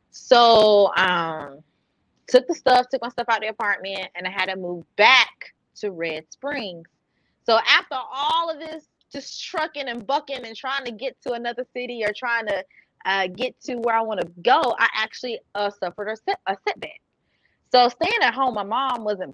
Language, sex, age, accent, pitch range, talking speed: English, female, 20-39, American, 180-245 Hz, 190 wpm